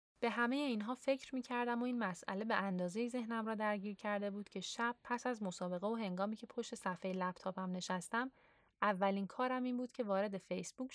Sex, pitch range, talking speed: female, 185-245 Hz, 190 wpm